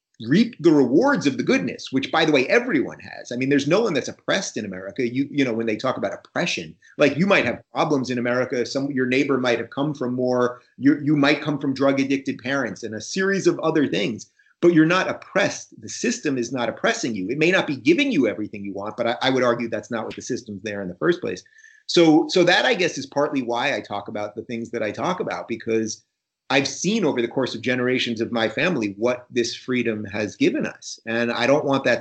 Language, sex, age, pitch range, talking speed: English, male, 30-49, 115-155 Hz, 245 wpm